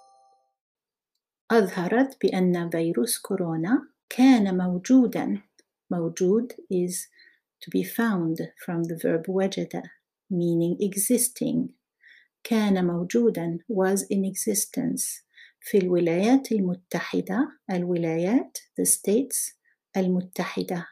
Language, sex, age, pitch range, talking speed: Arabic, female, 50-69, 175-245 Hz, 85 wpm